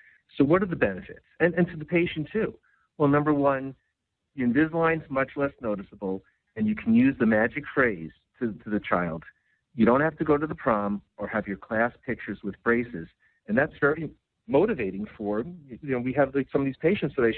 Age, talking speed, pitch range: 50-69, 210 wpm, 105-140 Hz